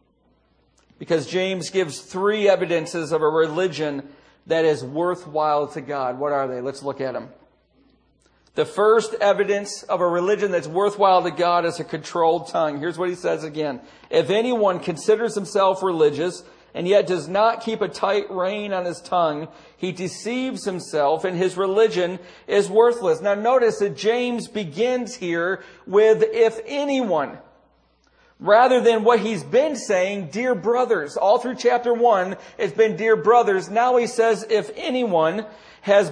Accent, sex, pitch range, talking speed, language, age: American, male, 180-230 Hz, 155 wpm, English, 40-59